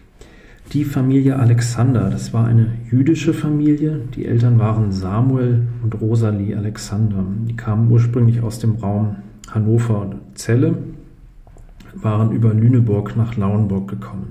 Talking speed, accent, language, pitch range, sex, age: 125 wpm, German, German, 105-120 Hz, male, 40-59